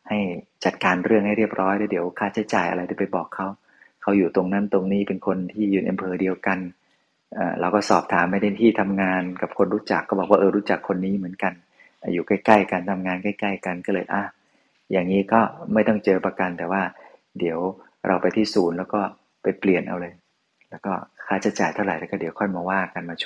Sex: male